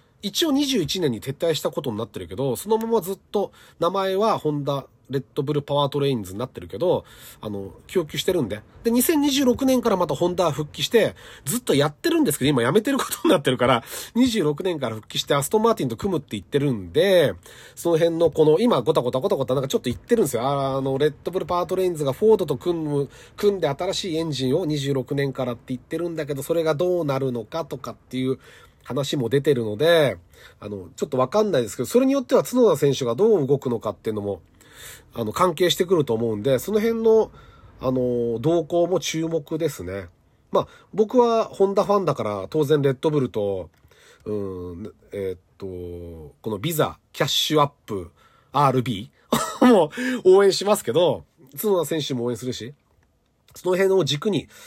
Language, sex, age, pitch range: Japanese, male, 30-49, 125-190 Hz